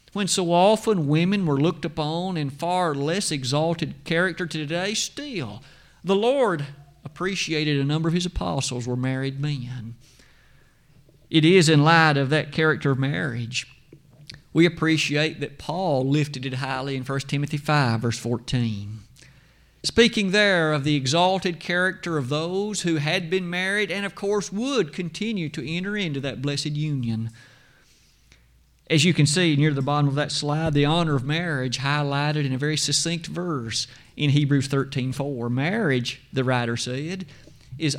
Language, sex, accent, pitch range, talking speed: English, male, American, 135-180 Hz, 155 wpm